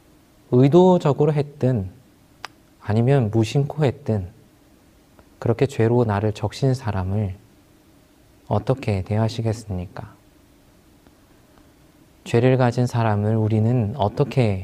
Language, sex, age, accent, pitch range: Korean, male, 20-39, native, 105-135 Hz